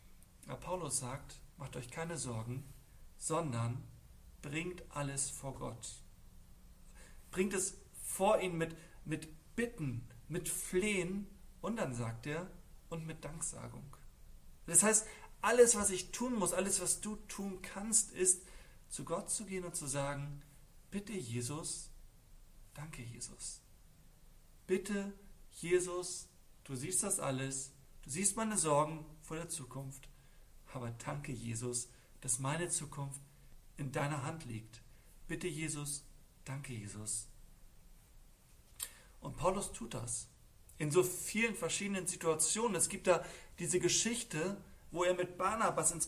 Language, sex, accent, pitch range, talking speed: German, male, German, 135-185 Hz, 125 wpm